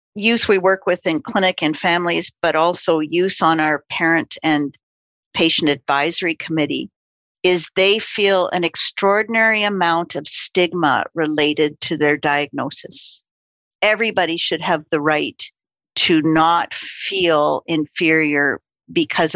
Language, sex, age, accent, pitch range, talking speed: English, female, 50-69, American, 155-185 Hz, 125 wpm